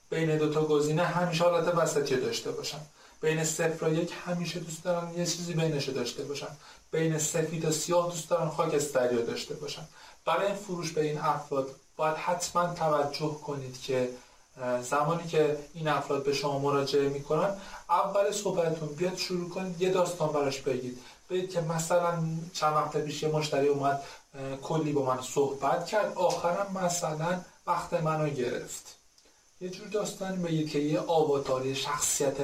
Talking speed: 150 wpm